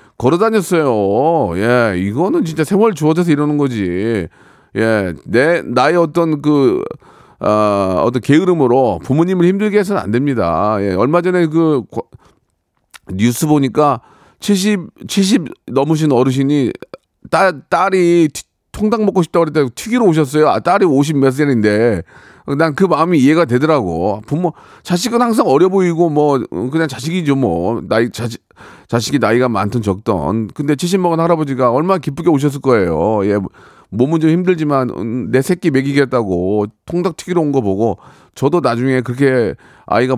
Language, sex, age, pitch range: Korean, male, 40-59, 110-165 Hz